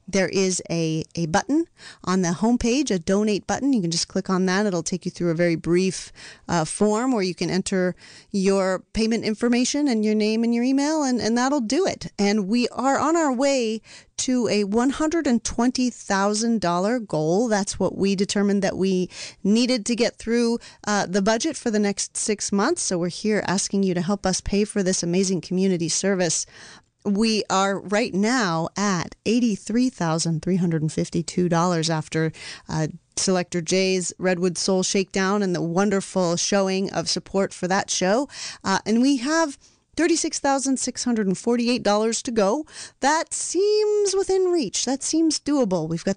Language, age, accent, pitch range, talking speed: English, 40-59, American, 180-235 Hz, 170 wpm